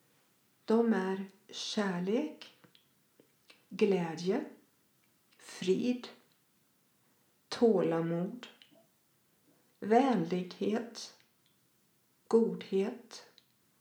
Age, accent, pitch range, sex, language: 50-69, native, 185-240 Hz, female, Swedish